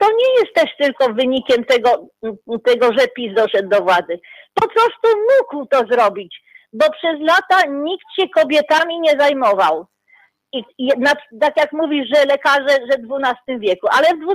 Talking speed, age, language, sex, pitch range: 155 wpm, 40-59, Polish, female, 260-380 Hz